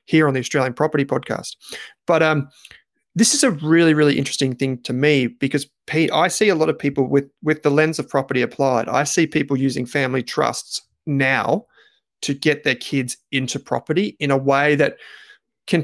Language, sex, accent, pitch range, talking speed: English, male, Australian, 130-150 Hz, 190 wpm